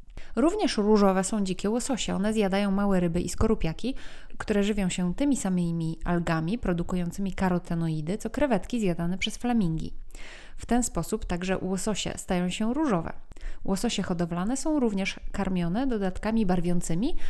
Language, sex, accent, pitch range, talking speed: Polish, female, native, 180-235 Hz, 135 wpm